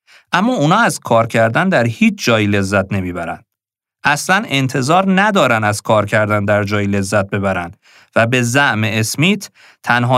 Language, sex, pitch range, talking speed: Persian, male, 105-145 Hz, 145 wpm